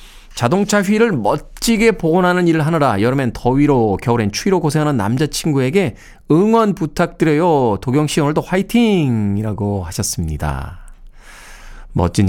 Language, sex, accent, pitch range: Korean, male, native, 115-195 Hz